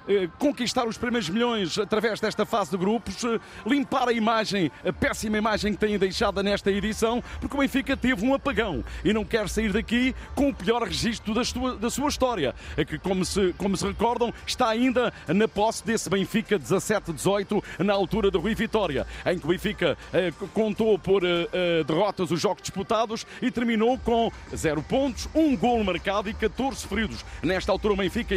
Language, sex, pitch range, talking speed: Portuguese, male, 195-240 Hz, 175 wpm